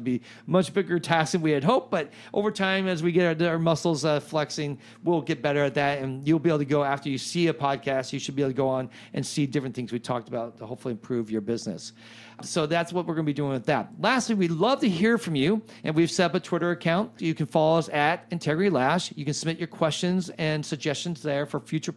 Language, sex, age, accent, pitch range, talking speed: English, male, 40-59, American, 135-170 Hz, 260 wpm